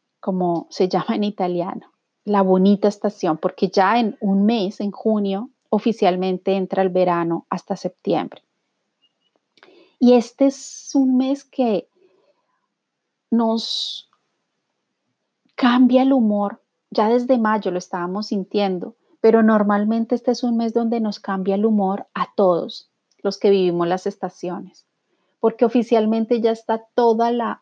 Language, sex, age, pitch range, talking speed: Spanish, female, 30-49, 195-230 Hz, 135 wpm